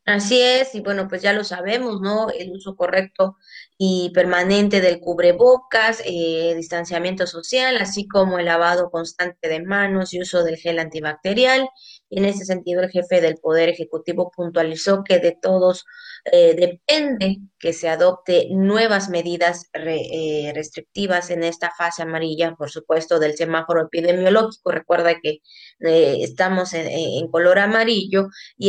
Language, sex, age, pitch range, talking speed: Spanish, female, 20-39, 170-205 Hz, 145 wpm